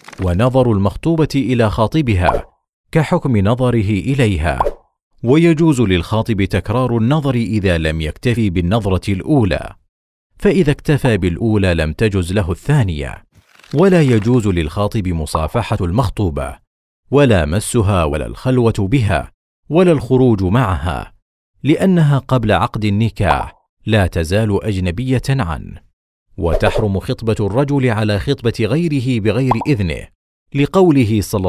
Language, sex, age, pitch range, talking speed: Arabic, male, 40-59, 90-130 Hz, 105 wpm